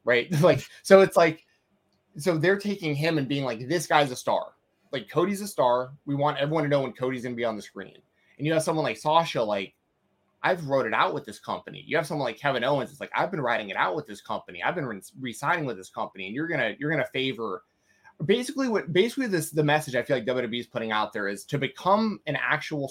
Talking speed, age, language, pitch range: 250 wpm, 20-39, English, 120-155 Hz